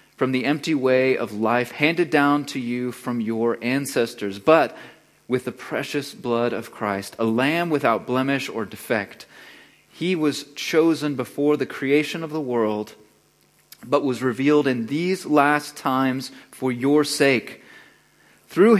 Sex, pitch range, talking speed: male, 115-145 Hz, 145 wpm